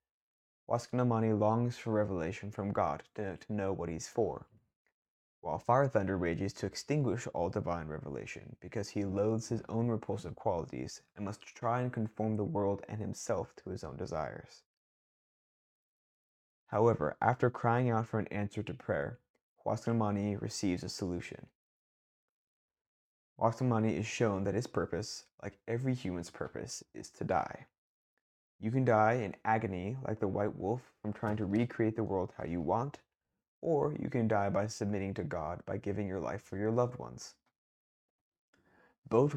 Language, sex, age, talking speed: English, male, 20-39, 155 wpm